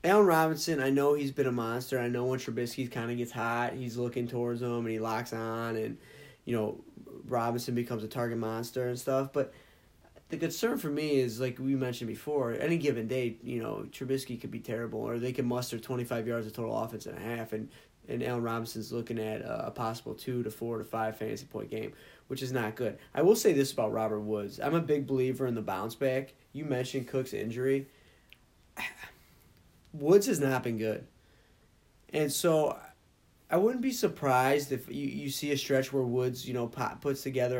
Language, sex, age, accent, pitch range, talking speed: English, male, 20-39, American, 115-135 Hz, 205 wpm